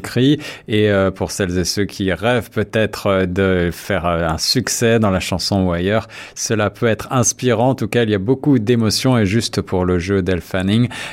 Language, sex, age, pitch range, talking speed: French, male, 50-69, 95-120 Hz, 195 wpm